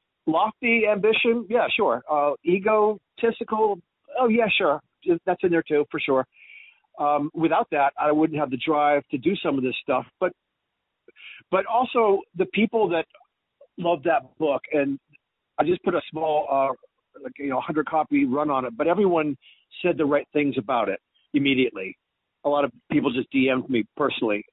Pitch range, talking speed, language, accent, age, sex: 125-155 Hz, 175 wpm, English, American, 50-69, male